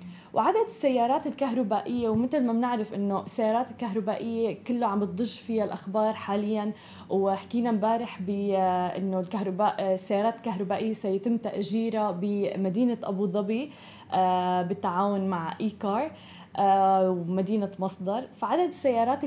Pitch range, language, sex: 200-250 Hz, Arabic, female